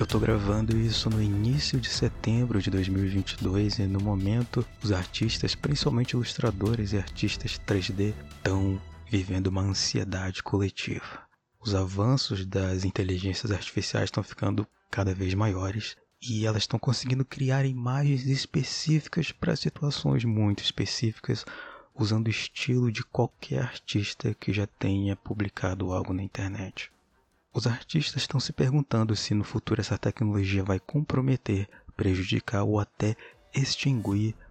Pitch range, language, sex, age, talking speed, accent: 95-115 Hz, Portuguese, male, 20-39, 130 wpm, Brazilian